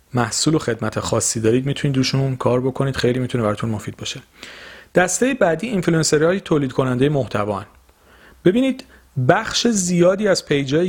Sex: male